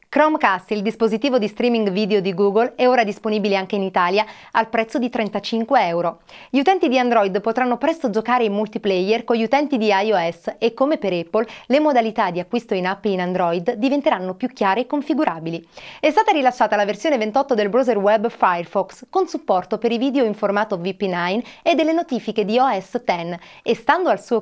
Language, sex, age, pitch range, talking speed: Italian, female, 30-49, 195-265 Hz, 190 wpm